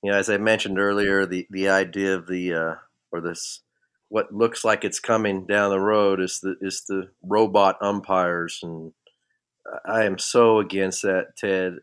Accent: American